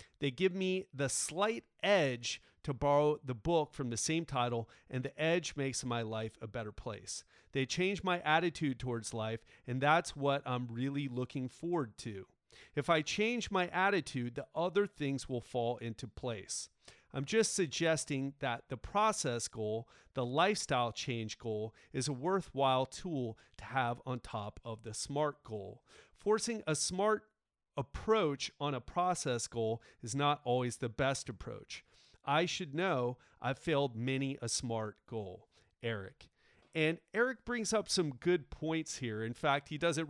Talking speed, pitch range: 160 wpm, 120-160 Hz